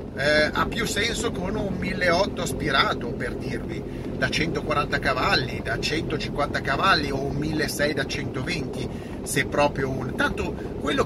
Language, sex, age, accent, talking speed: Italian, male, 40-59, native, 140 wpm